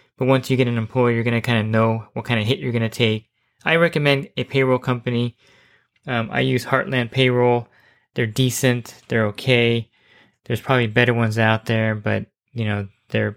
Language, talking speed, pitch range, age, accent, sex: English, 200 wpm, 110-120 Hz, 20-39, American, male